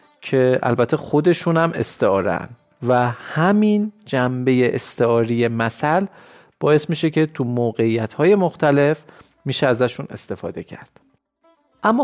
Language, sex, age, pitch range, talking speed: Persian, male, 40-59, 115-150 Hz, 100 wpm